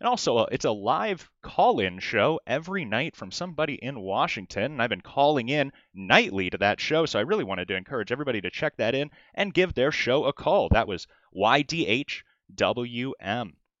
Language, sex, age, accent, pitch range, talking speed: English, male, 30-49, American, 110-155 Hz, 185 wpm